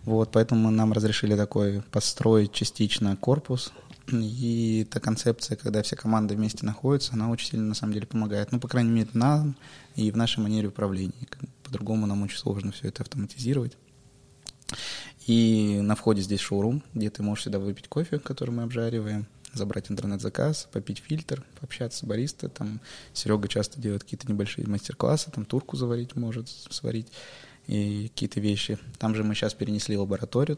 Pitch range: 105-130 Hz